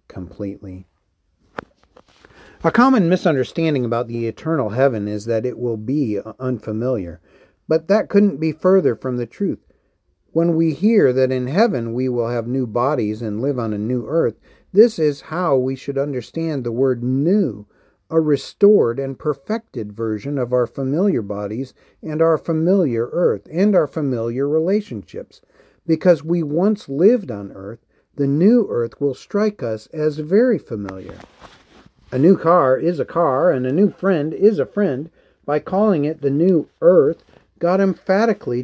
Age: 50-69